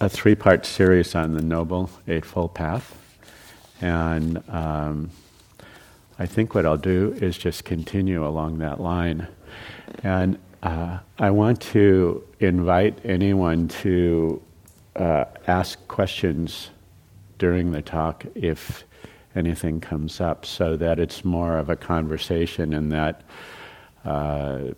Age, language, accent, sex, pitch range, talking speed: 50-69, English, American, male, 80-95 Hz, 120 wpm